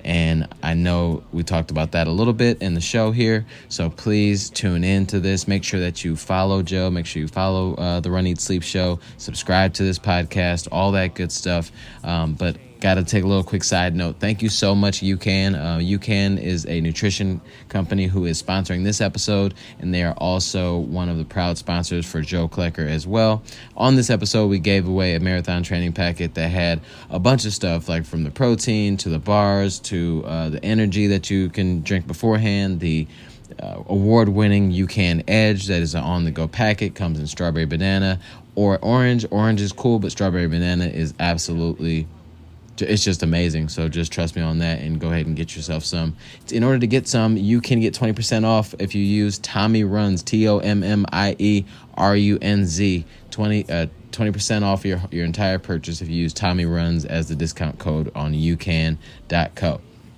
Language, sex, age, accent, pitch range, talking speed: English, male, 20-39, American, 85-100 Hz, 190 wpm